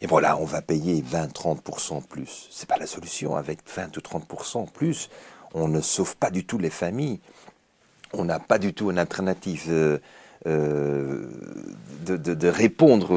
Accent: French